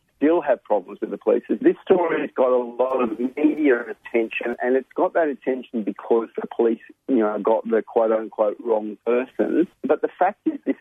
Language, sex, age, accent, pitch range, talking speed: English, male, 40-59, Australian, 115-145 Hz, 190 wpm